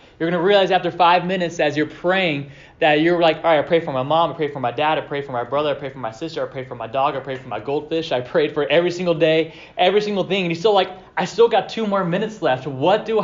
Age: 20-39